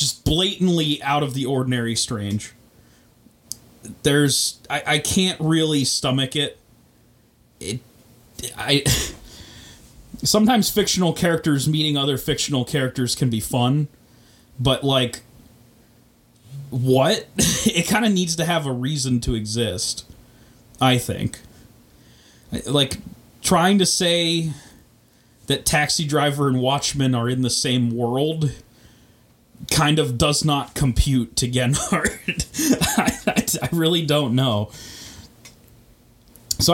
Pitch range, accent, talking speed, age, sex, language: 120-160 Hz, American, 105 wpm, 30-49, male, English